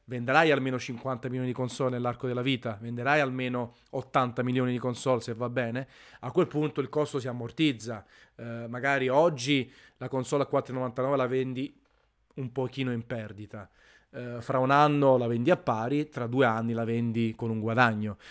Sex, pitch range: male, 120-155 Hz